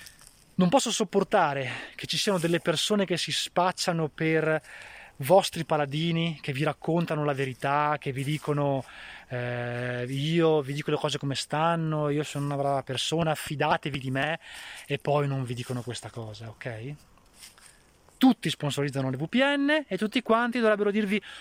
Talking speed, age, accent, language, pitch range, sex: 155 wpm, 20-39, native, Italian, 145-190 Hz, male